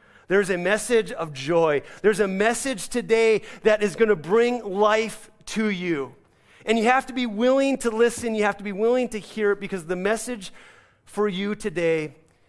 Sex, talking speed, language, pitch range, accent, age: male, 190 wpm, English, 170-220 Hz, American, 30-49